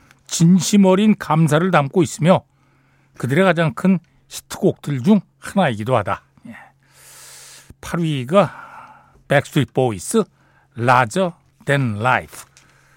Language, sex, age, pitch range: Korean, male, 60-79, 135-195 Hz